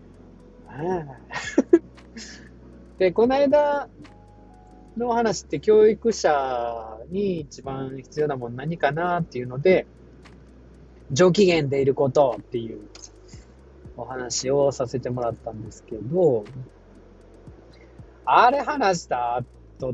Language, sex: Japanese, male